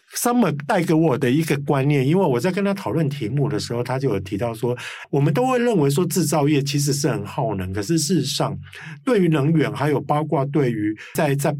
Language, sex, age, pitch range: Chinese, male, 50-69, 130-160 Hz